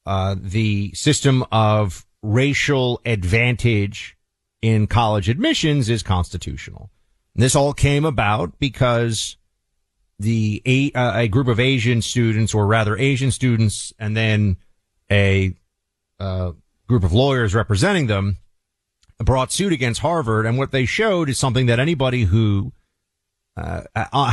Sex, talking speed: male, 125 wpm